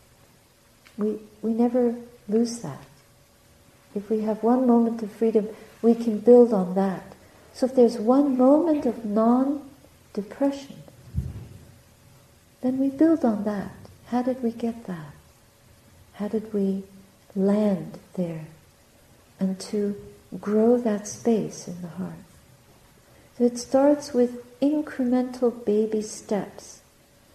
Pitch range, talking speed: 200-245 Hz, 120 wpm